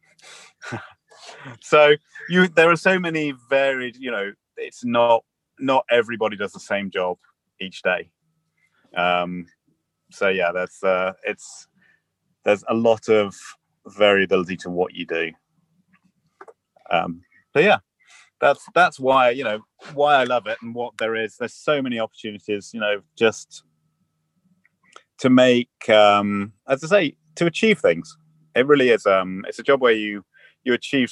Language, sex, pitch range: English, male, 105-150 Hz